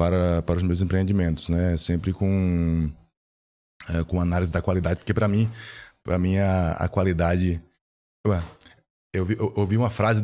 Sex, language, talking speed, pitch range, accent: male, Portuguese, 145 wpm, 90-115 Hz, Brazilian